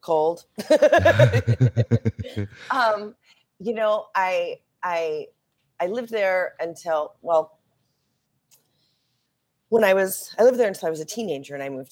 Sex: female